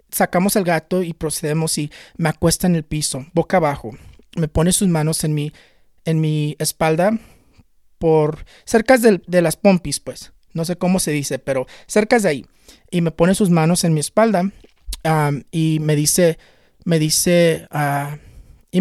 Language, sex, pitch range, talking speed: English, male, 155-190 Hz, 170 wpm